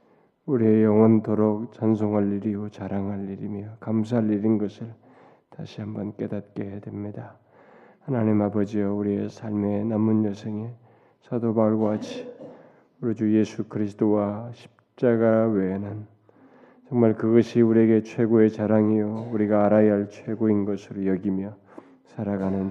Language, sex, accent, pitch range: Korean, male, native, 100-115 Hz